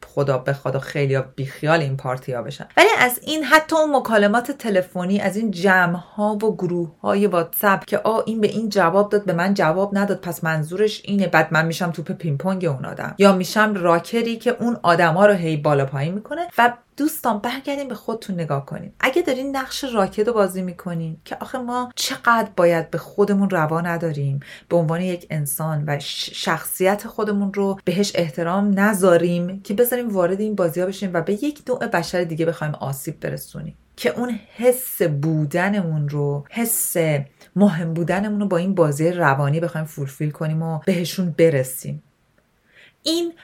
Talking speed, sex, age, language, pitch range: 175 wpm, female, 30-49, Persian, 160-215 Hz